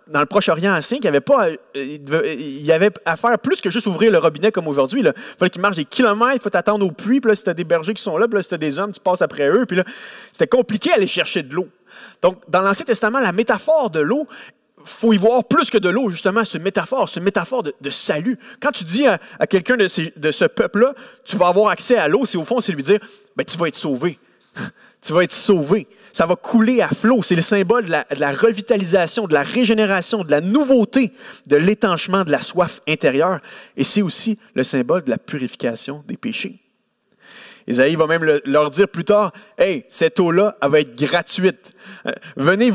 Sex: male